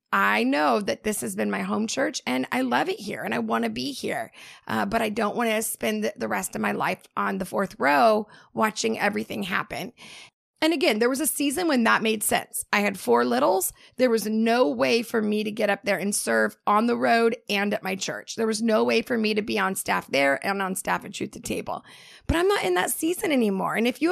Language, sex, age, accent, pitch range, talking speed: English, female, 30-49, American, 210-260 Hz, 250 wpm